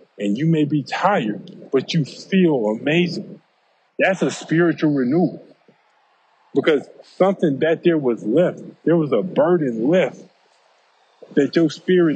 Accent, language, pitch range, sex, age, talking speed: American, English, 115-160 Hz, male, 20-39, 135 wpm